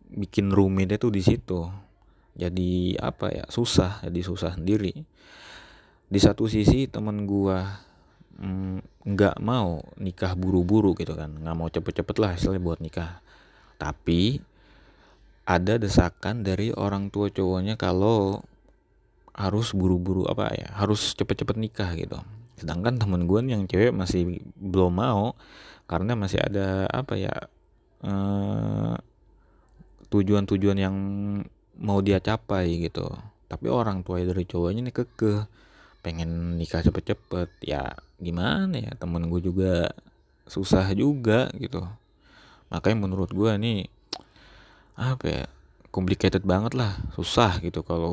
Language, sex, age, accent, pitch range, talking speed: Indonesian, male, 20-39, native, 85-105 Hz, 120 wpm